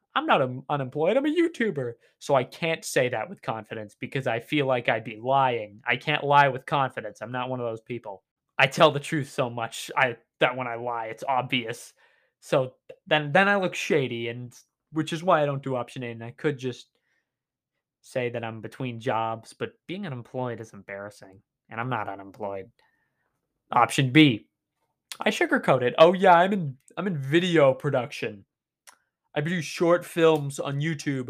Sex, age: male, 20-39